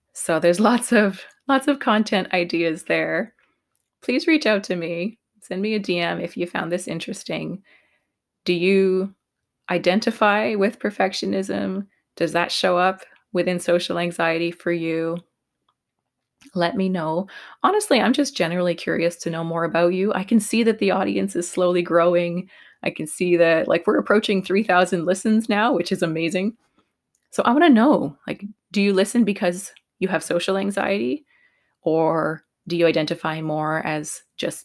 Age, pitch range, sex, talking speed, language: 20-39, 170-205 Hz, female, 160 wpm, English